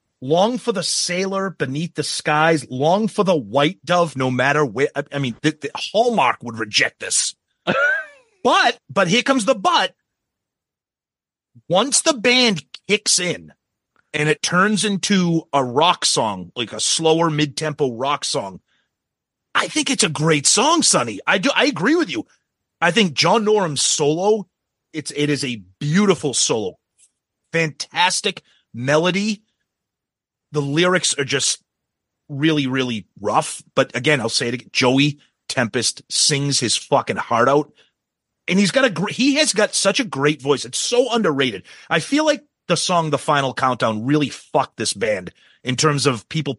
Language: English